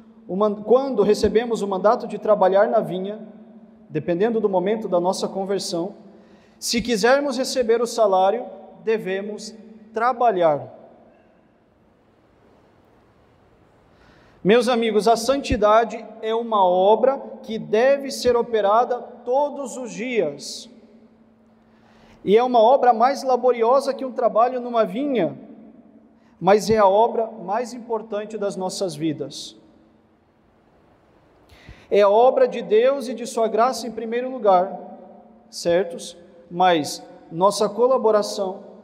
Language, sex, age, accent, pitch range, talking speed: Portuguese, male, 40-59, Brazilian, 205-245 Hz, 110 wpm